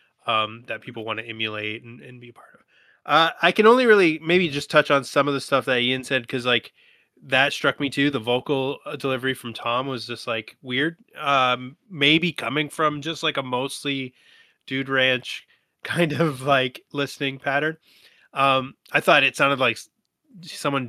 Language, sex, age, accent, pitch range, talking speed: English, male, 20-39, American, 120-145 Hz, 185 wpm